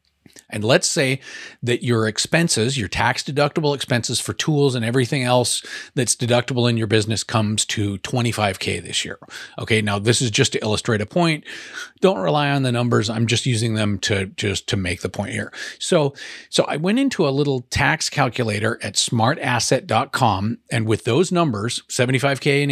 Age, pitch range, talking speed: 40-59, 110-145 Hz, 175 wpm